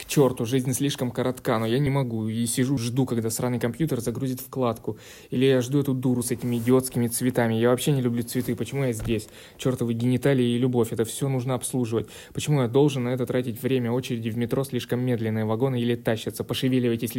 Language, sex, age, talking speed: Russian, male, 20-39, 200 wpm